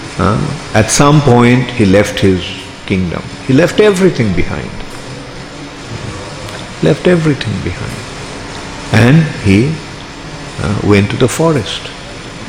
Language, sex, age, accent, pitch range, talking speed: English, male, 50-69, Indian, 105-140 Hz, 105 wpm